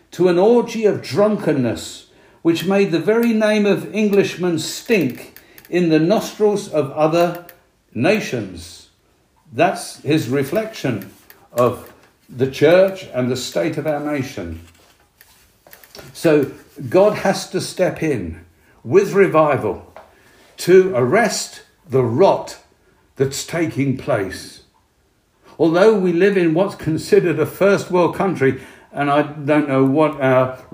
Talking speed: 120 wpm